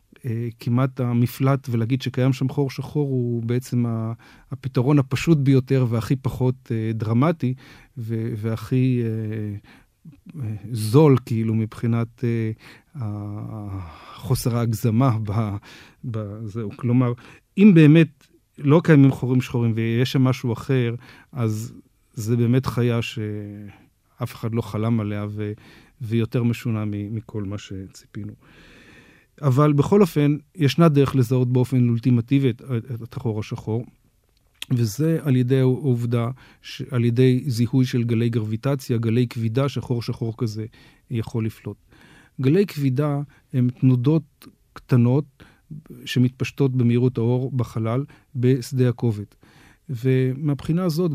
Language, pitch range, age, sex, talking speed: Hebrew, 115-135 Hz, 40-59, male, 105 wpm